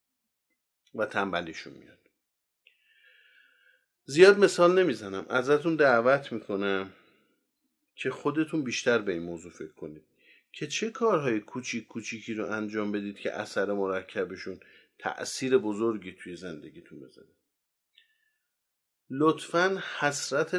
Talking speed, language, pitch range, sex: 100 wpm, Persian, 100-145 Hz, male